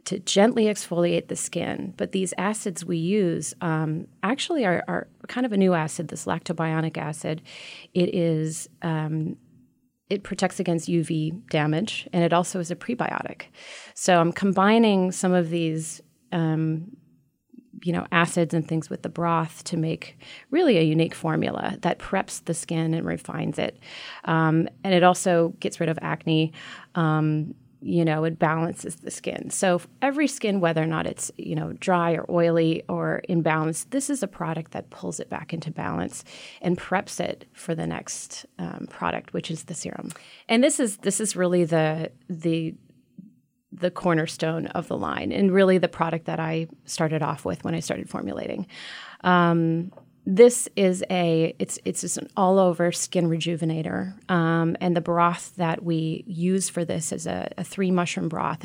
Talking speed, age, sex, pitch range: 170 wpm, 30-49, female, 165-185 Hz